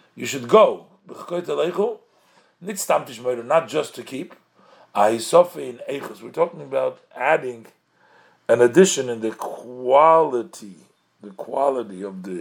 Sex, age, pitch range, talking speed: male, 50-69, 120-175 Hz, 95 wpm